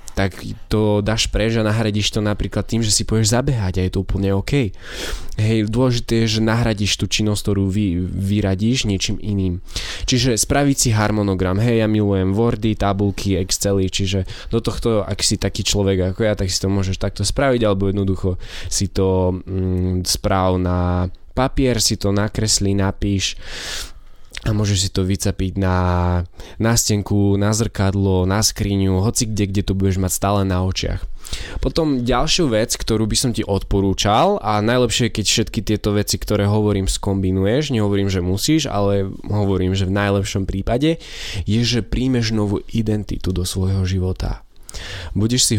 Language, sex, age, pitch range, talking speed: Slovak, male, 20-39, 95-110 Hz, 160 wpm